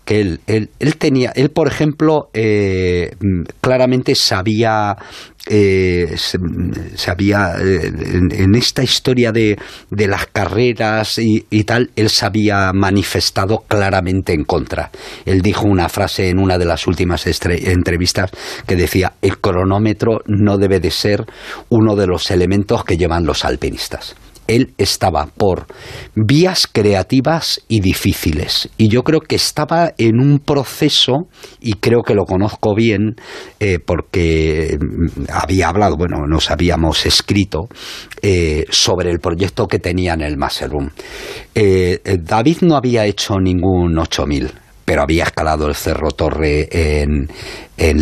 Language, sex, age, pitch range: Spanish, male, 40-59, 85-115 Hz